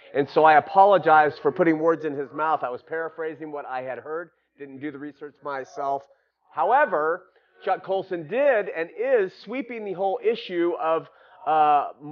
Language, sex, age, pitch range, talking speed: English, male, 30-49, 145-175 Hz, 170 wpm